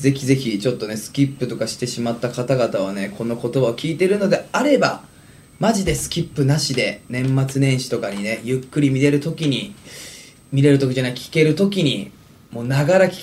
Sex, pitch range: male, 115-155 Hz